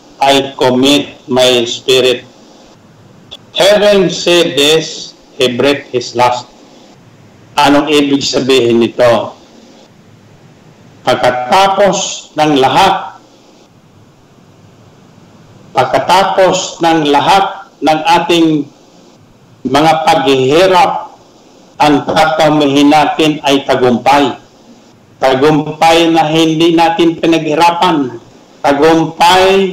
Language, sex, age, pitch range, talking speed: Filipino, male, 50-69, 145-180 Hz, 75 wpm